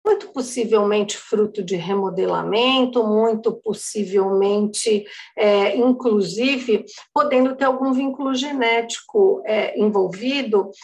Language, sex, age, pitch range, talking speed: English, female, 50-69, 210-260 Hz, 80 wpm